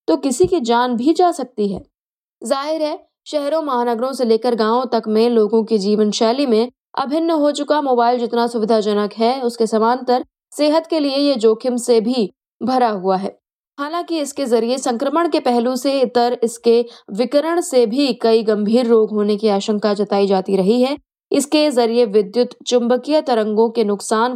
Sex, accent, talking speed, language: female, native, 170 wpm, Hindi